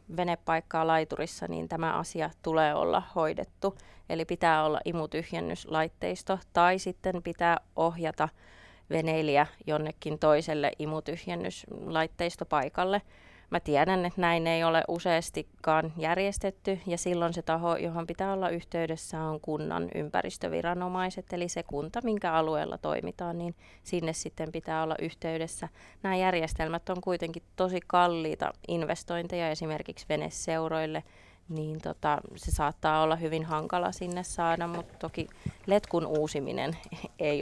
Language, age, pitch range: Finnish, 30-49, 155-175 Hz